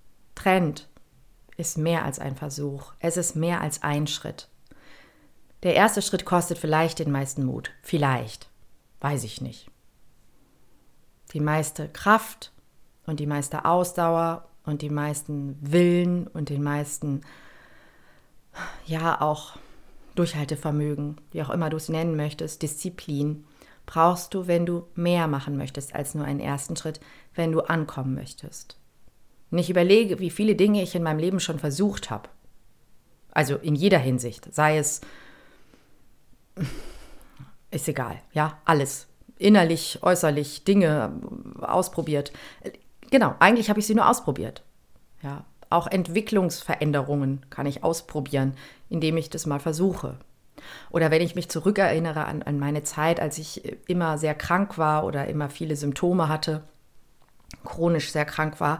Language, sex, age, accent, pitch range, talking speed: German, female, 40-59, German, 145-175 Hz, 135 wpm